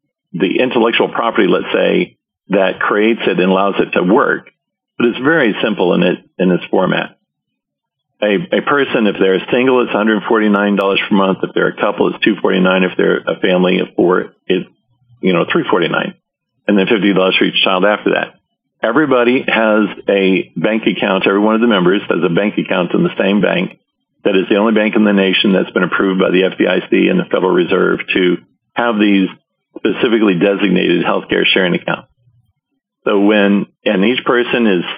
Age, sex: 50-69, male